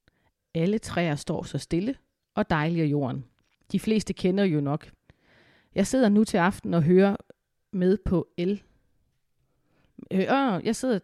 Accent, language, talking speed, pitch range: native, Danish, 150 wpm, 165-195 Hz